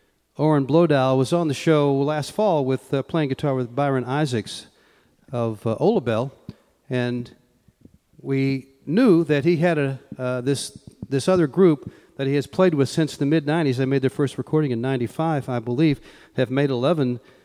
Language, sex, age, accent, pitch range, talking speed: English, male, 40-59, American, 130-170 Hz, 175 wpm